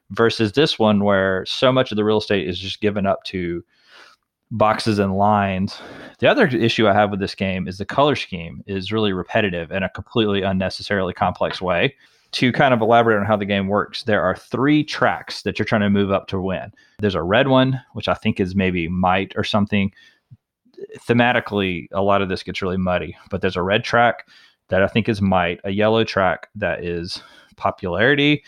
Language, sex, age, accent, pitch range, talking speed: English, male, 30-49, American, 95-115 Hz, 200 wpm